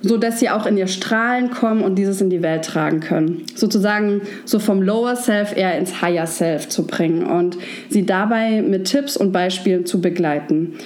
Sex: female